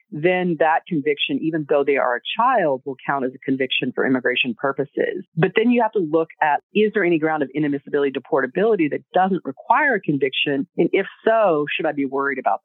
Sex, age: female, 40-59